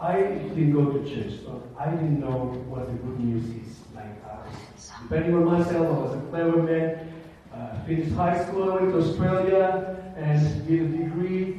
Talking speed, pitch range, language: 175 wpm, 125-175 Hz, English